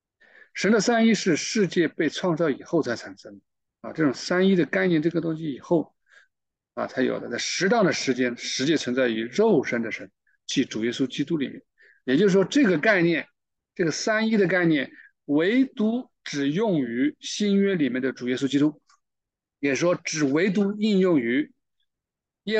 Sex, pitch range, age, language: male, 130-210 Hz, 50-69, Chinese